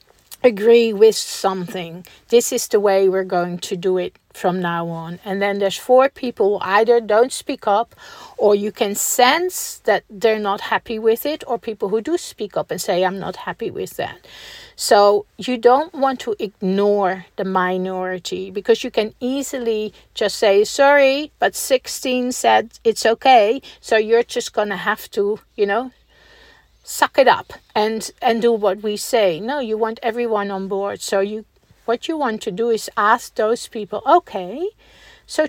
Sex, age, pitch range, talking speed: female, 50-69, 200-275 Hz, 175 wpm